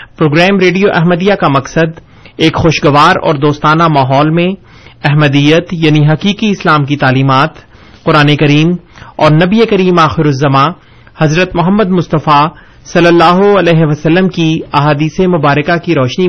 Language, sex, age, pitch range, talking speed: Urdu, male, 40-59, 145-180 Hz, 135 wpm